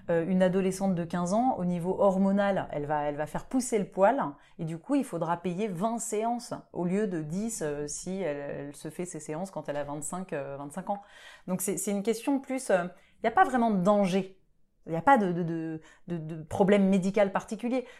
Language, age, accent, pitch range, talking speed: French, 30-49, French, 160-205 Hz, 230 wpm